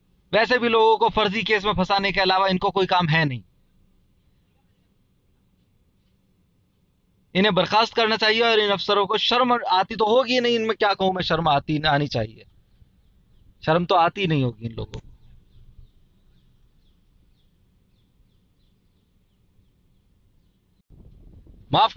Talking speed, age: 120 wpm, 30-49